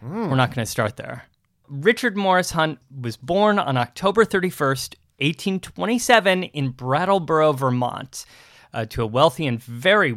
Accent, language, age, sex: American, English, 30-49, male